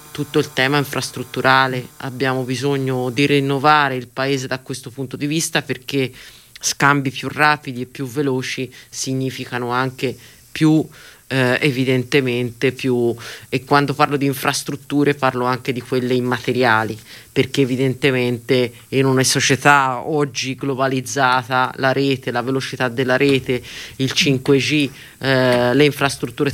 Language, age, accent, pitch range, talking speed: Italian, 30-49, native, 125-140 Hz, 125 wpm